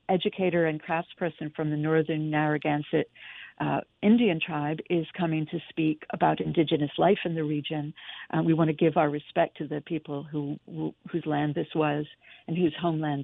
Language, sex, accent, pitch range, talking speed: English, female, American, 155-195 Hz, 170 wpm